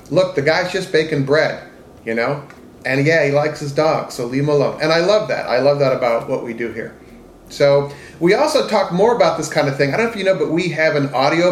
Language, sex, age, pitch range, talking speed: English, male, 40-59, 130-160 Hz, 265 wpm